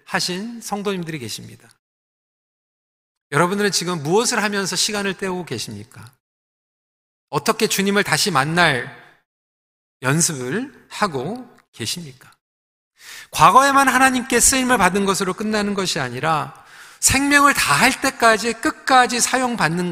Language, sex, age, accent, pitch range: Korean, male, 40-59, native, 165-235 Hz